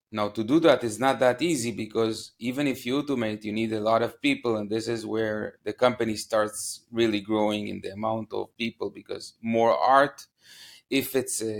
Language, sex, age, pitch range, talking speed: English, male, 30-49, 110-120 Hz, 200 wpm